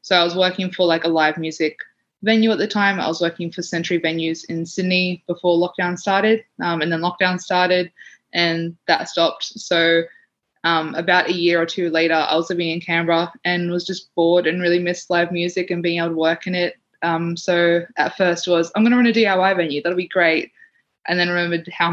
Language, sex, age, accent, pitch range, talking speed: English, female, 20-39, Australian, 165-185 Hz, 220 wpm